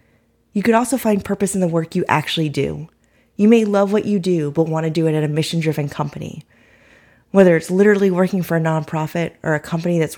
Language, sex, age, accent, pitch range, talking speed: English, female, 30-49, American, 150-185 Hz, 220 wpm